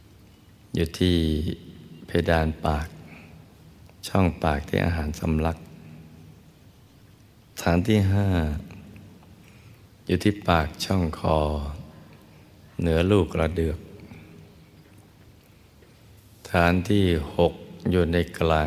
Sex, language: male, Thai